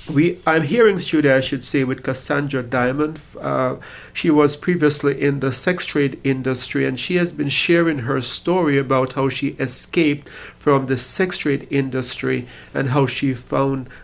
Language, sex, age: English, male, 50-69